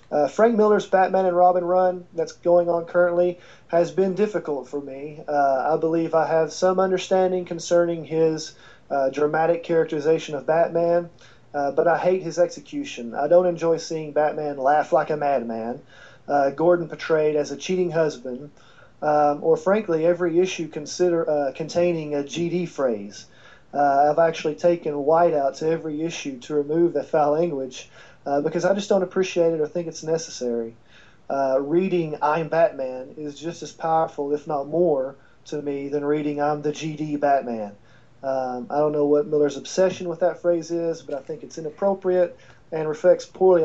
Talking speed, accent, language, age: 170 wpm, American, English, 40-59